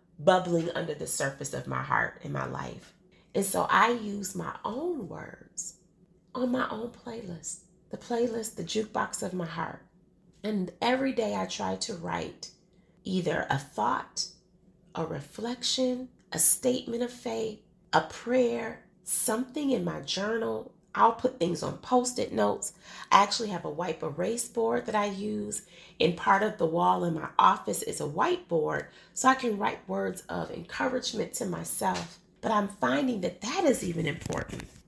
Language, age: English, 30-49